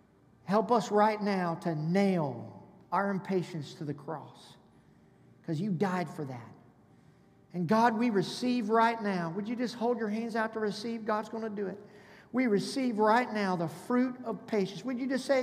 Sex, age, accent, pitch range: male, 50-69, American, 205-275 Hz